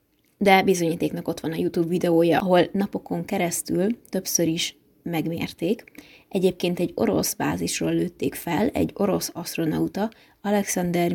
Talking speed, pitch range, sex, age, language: 125 wpm, 170-205 Hz, female, 20-39, Hungarian